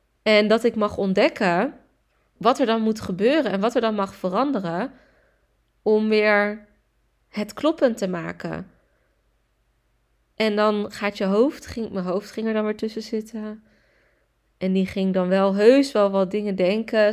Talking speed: 160 wpm